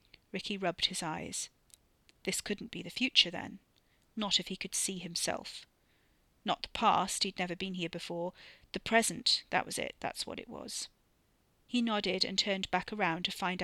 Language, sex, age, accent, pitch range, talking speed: English, female, 40-59, British, 180-210 Hz, 180 wpm